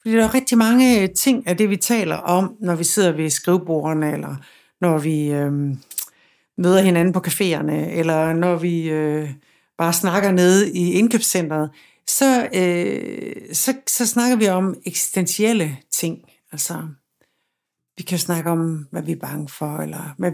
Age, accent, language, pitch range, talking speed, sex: 60-79, native, Danish, 170-215 Hz, 160 wpm, female